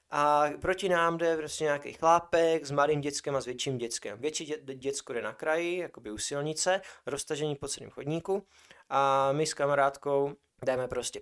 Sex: male